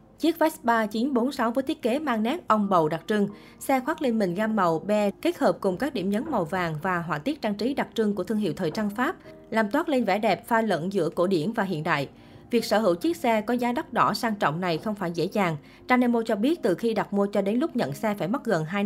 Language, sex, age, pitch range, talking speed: Vietnamese, female, 20-39, 190-245 Hz, 270 wpm